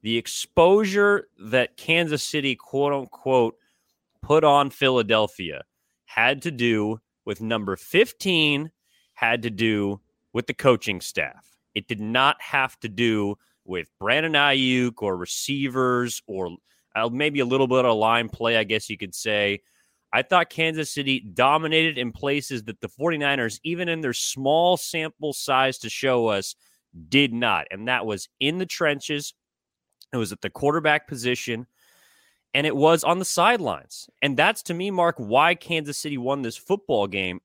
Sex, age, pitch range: male, 30-49, 115-165 Hz